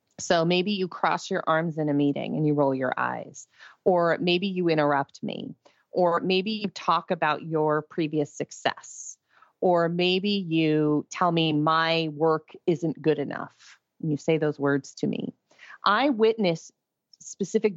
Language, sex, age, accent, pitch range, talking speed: English, female, 30-49, American, 155-195 Hz, 160 wpm